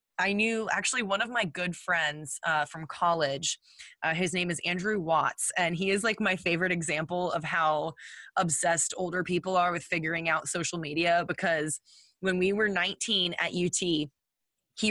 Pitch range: 165-190 Hz